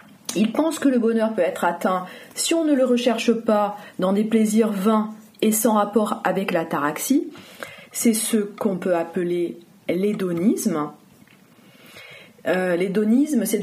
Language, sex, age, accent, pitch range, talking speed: French, female, 30-49, French, 190-250 Hz, 140 wpm